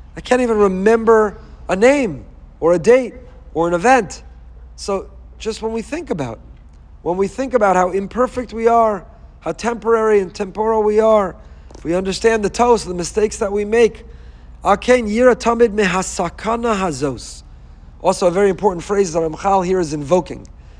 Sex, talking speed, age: male, 145 wpm, 40-59